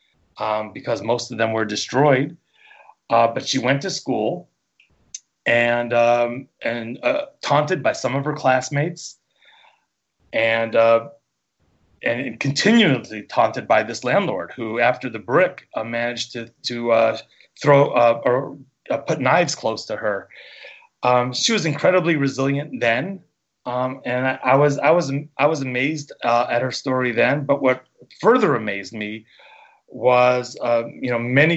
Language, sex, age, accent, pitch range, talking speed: English, male, 30-49, American, 115-140 Hz, 150 wpm